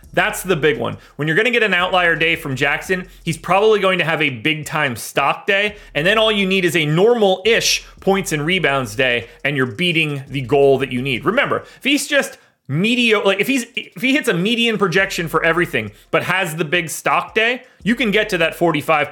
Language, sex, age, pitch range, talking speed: English, male, 30-49, 150-195 Hz, 225 wpm